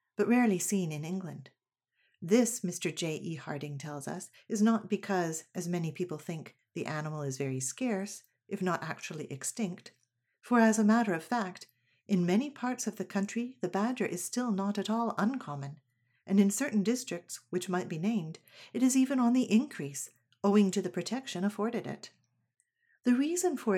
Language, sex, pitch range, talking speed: English, female, 170-220 Hz, 180 wpm